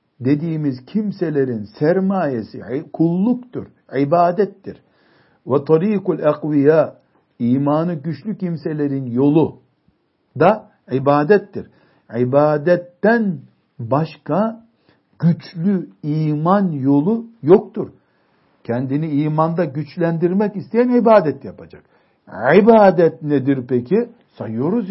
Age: 60-79